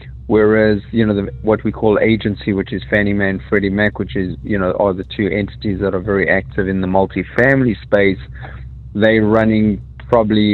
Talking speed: 195 wpm